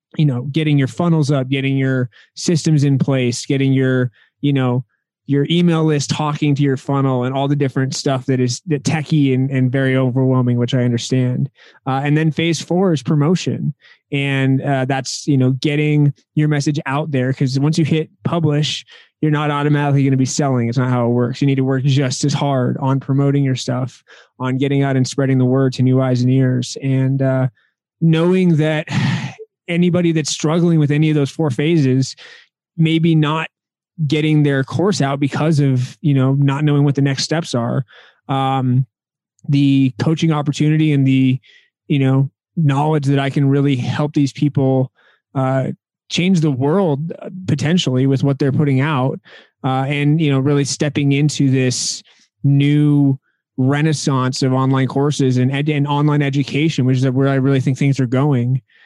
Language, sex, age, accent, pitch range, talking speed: English, male, 20-39, American, 130-150 Hz, 180 wpm